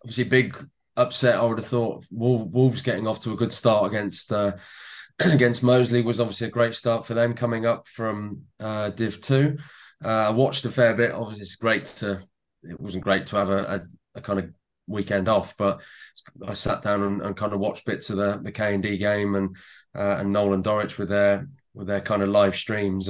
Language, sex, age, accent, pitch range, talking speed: English, male, 20-39, British, 100-110 Hz, 220 wpm